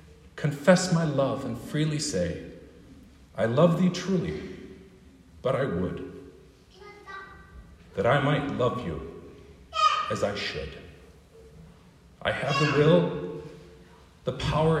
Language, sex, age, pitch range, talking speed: English, male, 50-69, 90-155 Hz, 110 wpm